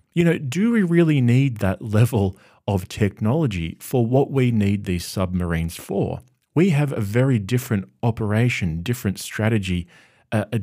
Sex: male